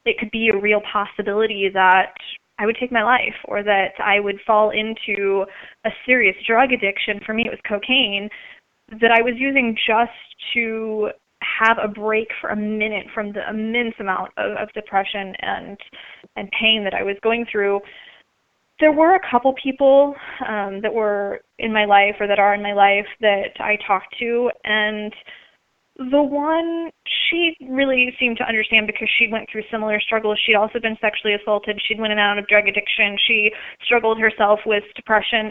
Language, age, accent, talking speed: English, 20-39, American, 180 wpm